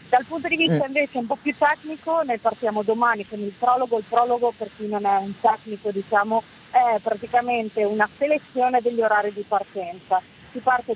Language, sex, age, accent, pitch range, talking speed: Italian, female, 40-59, native, 210-245 Hz, 185 wpm